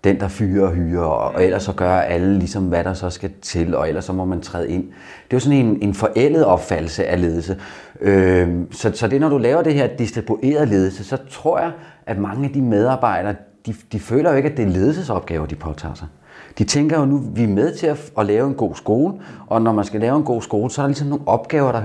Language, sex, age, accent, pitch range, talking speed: Danish, male, 30-49, native, 95-125 Hz, 255 wpm